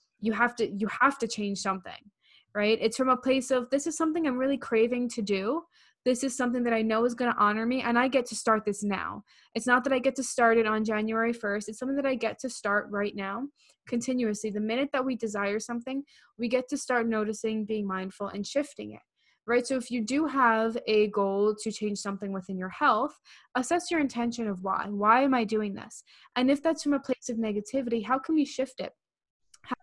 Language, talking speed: English, 230 wpm